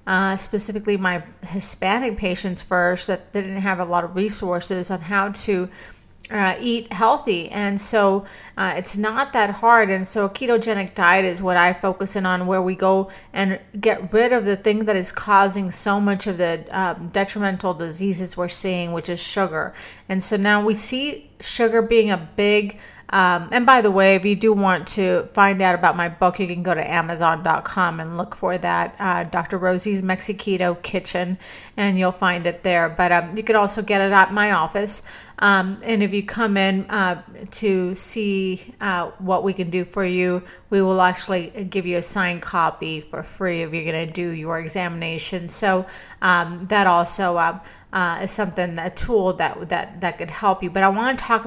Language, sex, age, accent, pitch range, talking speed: English, female, 30-49, American, 180-205 Hz, 195 wpm